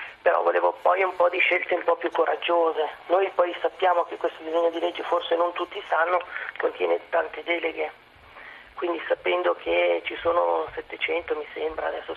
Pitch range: 170-240 Hz